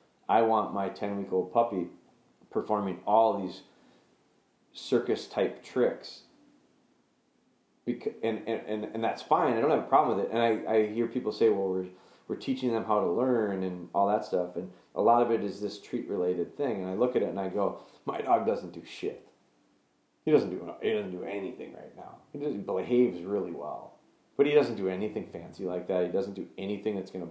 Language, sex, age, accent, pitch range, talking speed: English, male, 30-49, American, 95-115 Hz, 200 wpm